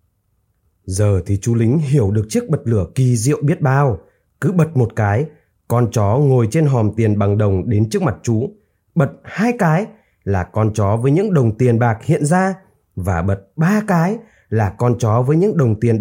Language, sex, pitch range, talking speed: Vietnamese, male, 105-170 Hz, 200 wpm